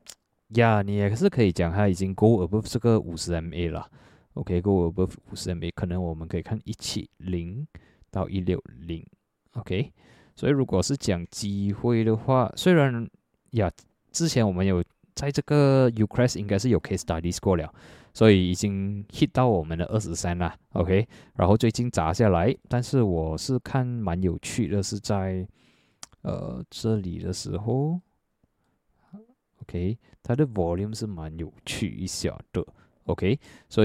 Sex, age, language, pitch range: male, 20-39, Chinese, 85-110 Hz